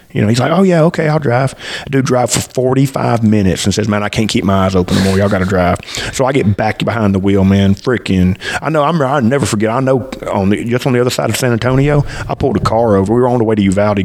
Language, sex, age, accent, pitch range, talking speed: English, male, 30-49, American, 95-115 Hz, 295 wpm